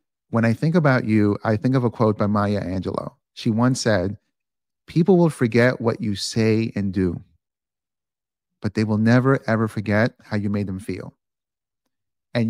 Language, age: English, 40-59